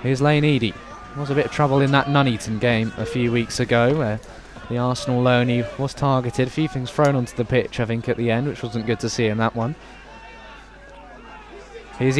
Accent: British